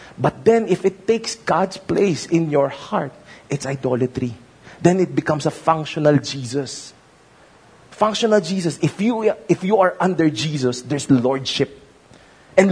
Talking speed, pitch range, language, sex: 140 wpm, 125-175 Hz, English, male